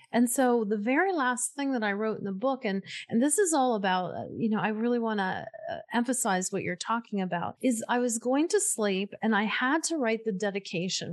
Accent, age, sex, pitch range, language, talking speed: American, 30-49, female, 195-250 Hz, English, 225 wpm